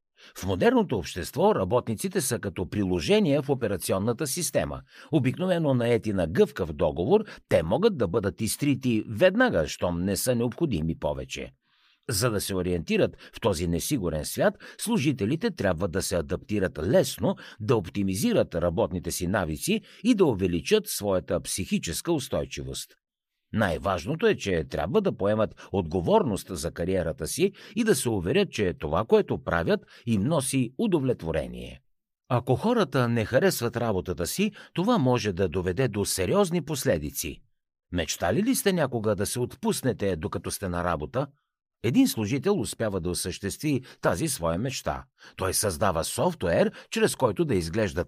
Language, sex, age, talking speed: Bulgarian, male, 60-79, 140 wpm